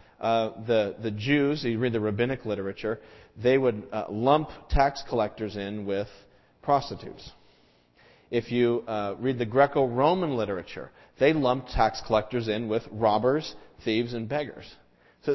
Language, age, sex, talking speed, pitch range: English, 40-59, male, 140 wpm, 110-145 Hz